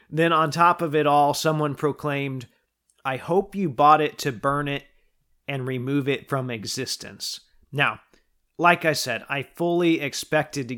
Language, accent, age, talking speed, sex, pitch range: English, American, 30-49, 160 wpm, male, 135-160 Hz